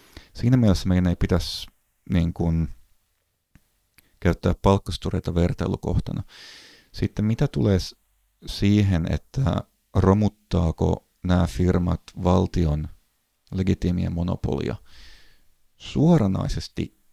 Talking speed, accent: 75 wpm, native